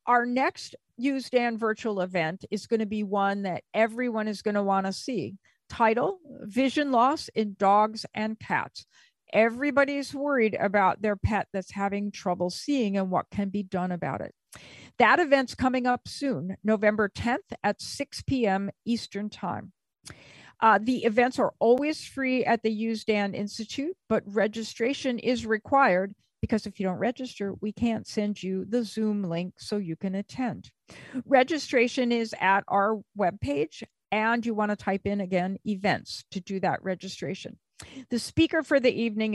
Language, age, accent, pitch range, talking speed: English, 50-69, American, 200-250 Hz, 160 wpm